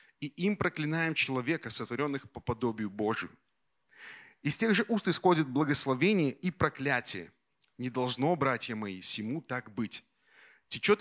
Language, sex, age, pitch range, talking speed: Russian, male, 30-49, 120-160 Hz, 130 wpm